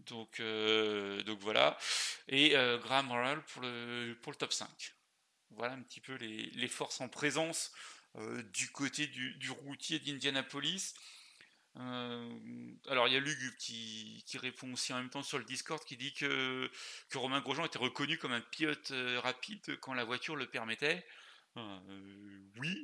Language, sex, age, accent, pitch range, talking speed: French, male, 40-59, French, 120-150 Hz, 170 wpm